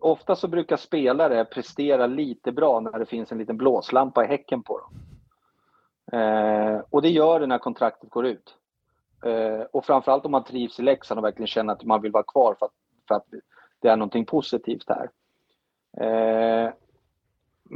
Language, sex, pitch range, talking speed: Swedish, male, 115-160 Hz, 175 wpm